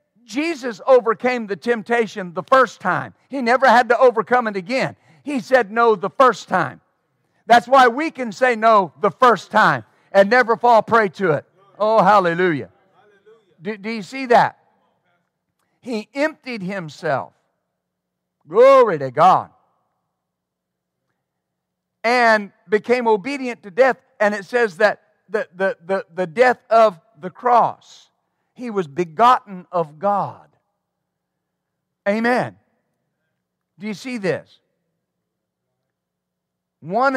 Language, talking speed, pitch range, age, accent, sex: English, 125 wpm, 185-245 Hz, 50-69, American, male